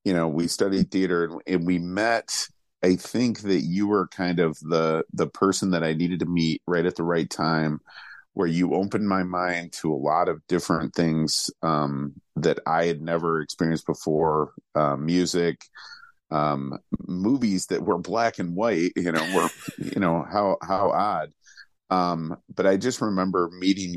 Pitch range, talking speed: 80-90 Hz, 180 wpm